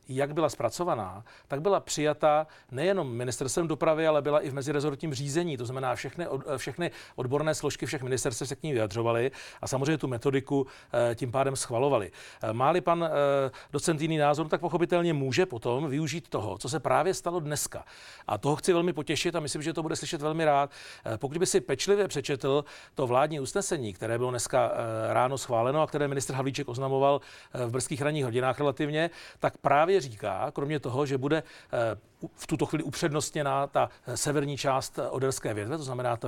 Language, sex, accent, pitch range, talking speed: Czech, male, native, 130-160 Hz, 175 wpm